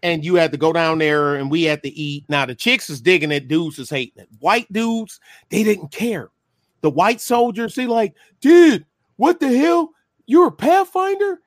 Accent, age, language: American, 40-59, English